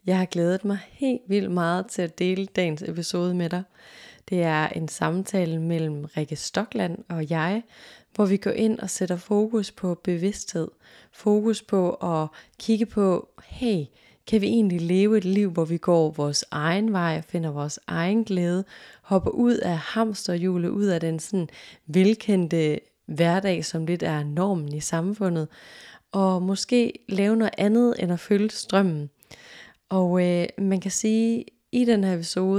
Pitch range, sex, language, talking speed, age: 170-200 Hz, female, Danish, 160 wpm, 20-39